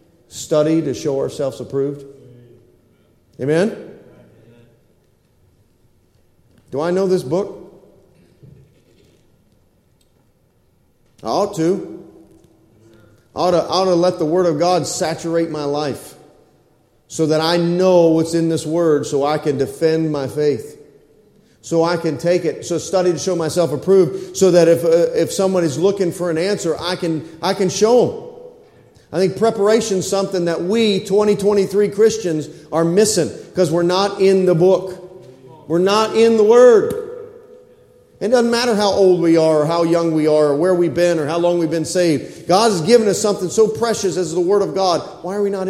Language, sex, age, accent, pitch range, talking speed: English, male, 40-59, American, 160-200 Hz, 165 wpm